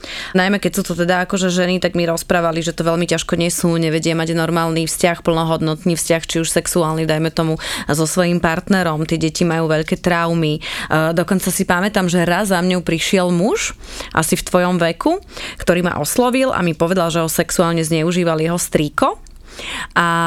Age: 20-39